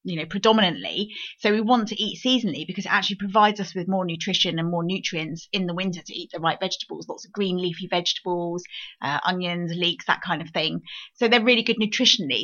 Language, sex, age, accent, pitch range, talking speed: English, female, 30-49, British, 180-225 Hz, 215 wpm